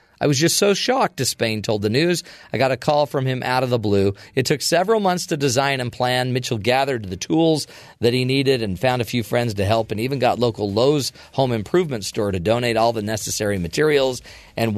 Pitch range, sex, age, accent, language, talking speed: 105-135 Hz, male, 40-59, American, English, 225 wpm